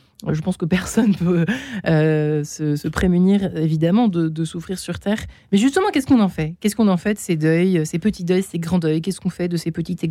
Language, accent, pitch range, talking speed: French, French, 165-210 Hz, 250 wpm